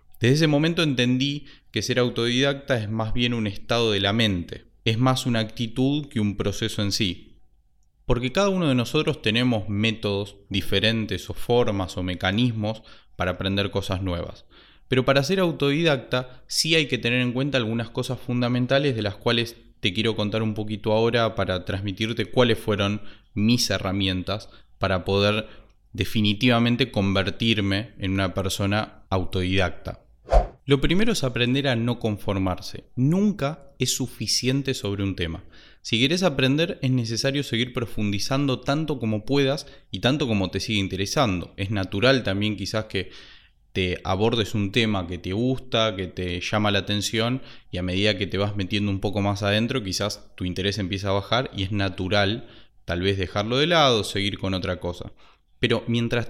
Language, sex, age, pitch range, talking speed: Spanish, male, 20-39, 100-125 Hz, 165 wpm